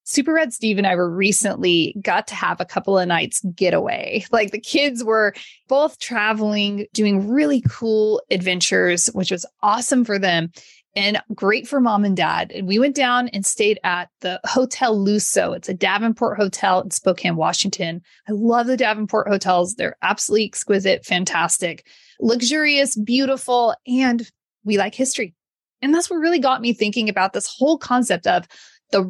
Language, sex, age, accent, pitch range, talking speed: English, female, 30-49, American, 195-255 Hz, 165 wpm